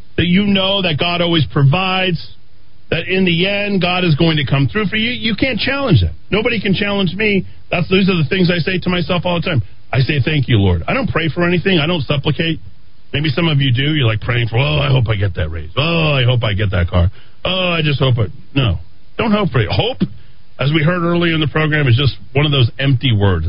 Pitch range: 105-170 Hz